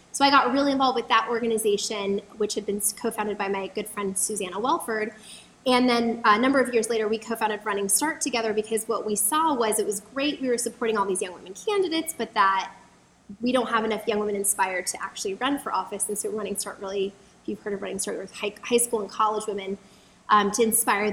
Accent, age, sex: American, 20-39, female